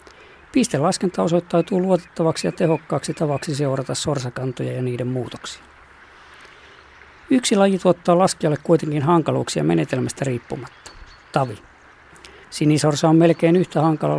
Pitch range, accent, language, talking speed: 130-160 Hz, native, Finnish, 110 wpm